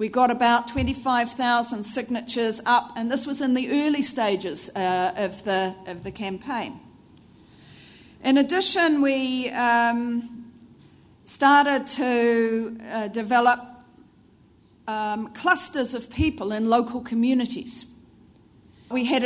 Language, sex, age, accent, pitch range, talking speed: English, female, 40-59, Australian, 230-285 Hz, 110 wpm